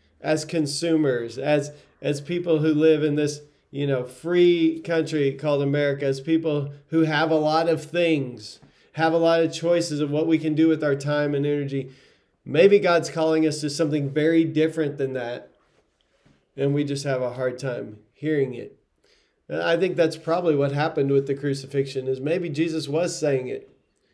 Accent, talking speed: American, 180 wpm